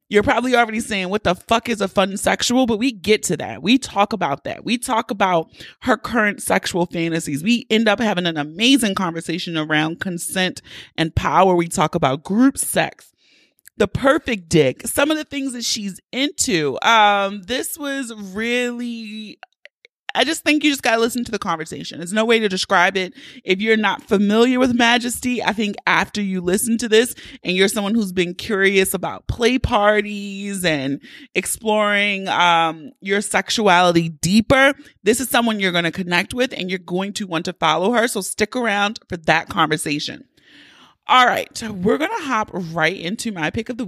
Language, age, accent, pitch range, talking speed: English, 30-49, American, 180-235 Hz, 185 wpm